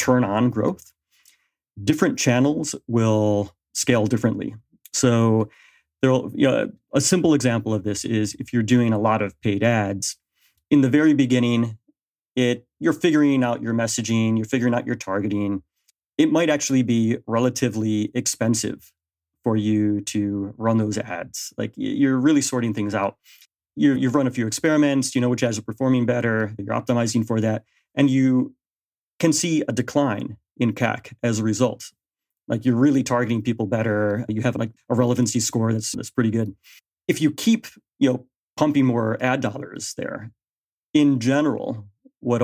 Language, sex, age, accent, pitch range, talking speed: English, male, 30-49, American, 110-130 Hz, 160 wpm